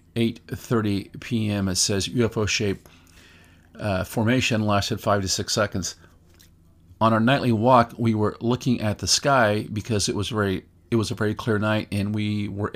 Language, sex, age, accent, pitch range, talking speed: English, male, 50-69, American, 95-115 Hz, 170 wpm